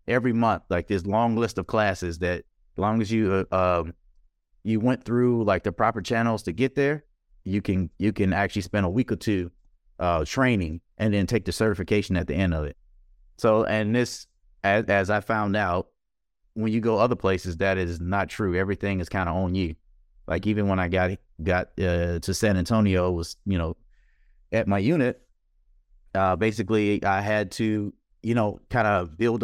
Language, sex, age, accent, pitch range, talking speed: English, male, 30-49, American, 90-110 Hz, 195 wpm